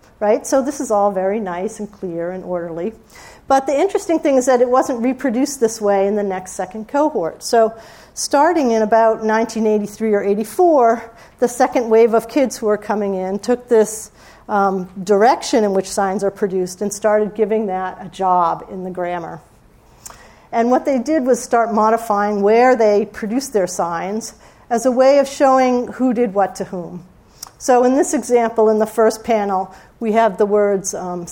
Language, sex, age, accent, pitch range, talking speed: English, female, 40-59, American, 200-250 Hz, 185 wpm